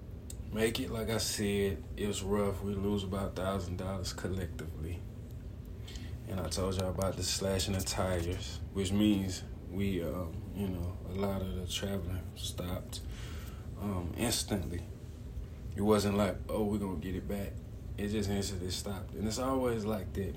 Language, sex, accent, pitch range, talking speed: English, male, American, 90-105 Hz, 160 wpm